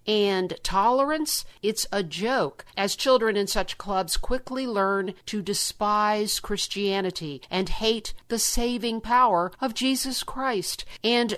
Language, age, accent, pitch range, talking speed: English, 50-69, American, 180-225 Hz, 125 wpm